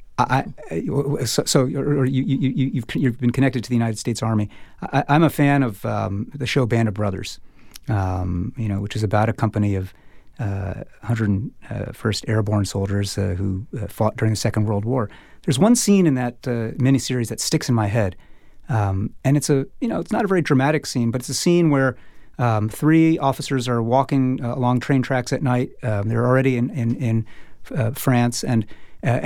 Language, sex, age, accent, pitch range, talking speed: English, male, 30-49, American, 115-145 Hz, 200 wpm